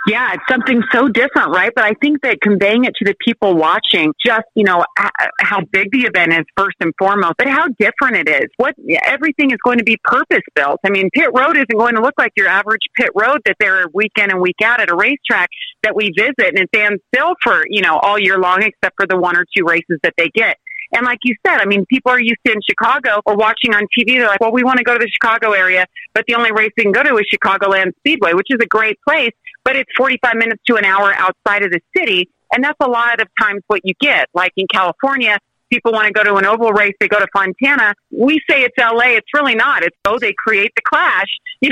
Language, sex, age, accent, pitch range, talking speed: English, female, 30-49, American, 200-260 Hz, 255 wpm